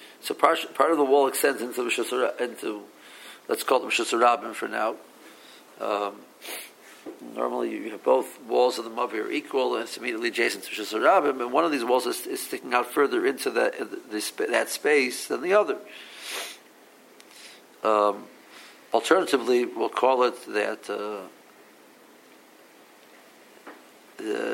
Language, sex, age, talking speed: English, male, 50-69, 140 wpm